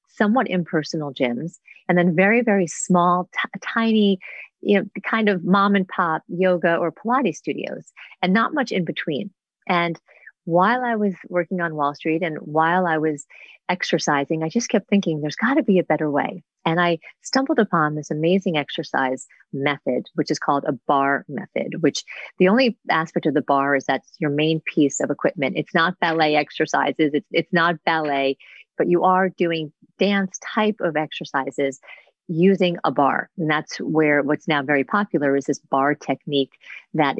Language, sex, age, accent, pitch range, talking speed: English, female, 40-59, American, 150-190 Hz, 175 wpm